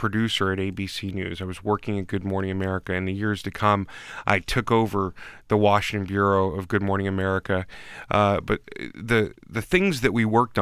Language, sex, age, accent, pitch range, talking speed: English, male, 30-49, American, 100-115 Hz, 190 wpm